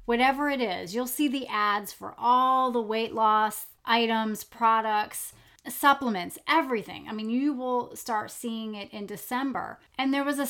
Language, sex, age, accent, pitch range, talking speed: English, female, 30-49, American, 220-280 Hz, 165 wpm